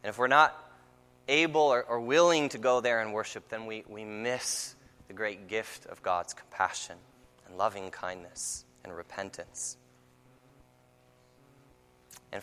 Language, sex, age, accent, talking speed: English, male, 20-39, American, 140 wpm